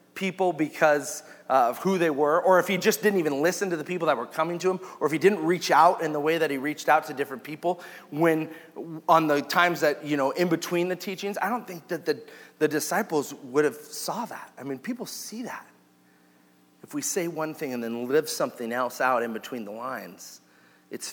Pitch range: 135-180 Hz